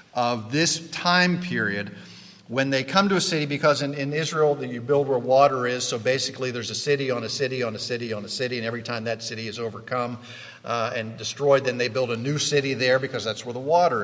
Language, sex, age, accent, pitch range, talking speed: English, male, 50-69, American, 115-155 Hz, 235 wpm